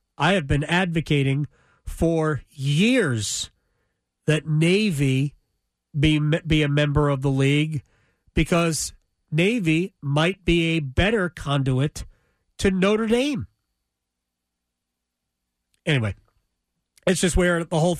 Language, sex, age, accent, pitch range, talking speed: English, male, 40-59, American, 125-190 Hz, 105 wpm